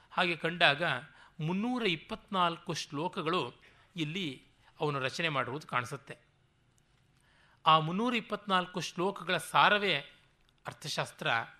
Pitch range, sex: 140-180 Hz, male